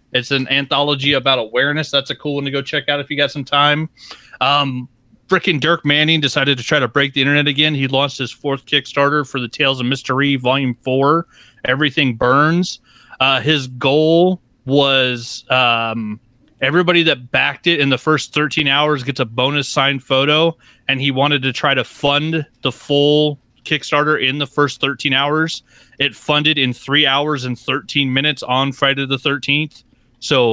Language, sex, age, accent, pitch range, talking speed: English, male, 30-49, American, 125-145 Hz, 180 wpm